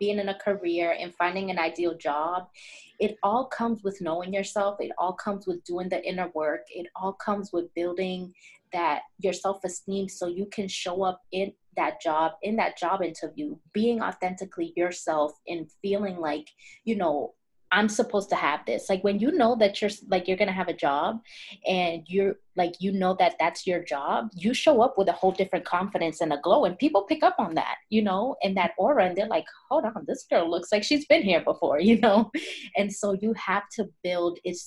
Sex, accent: female, American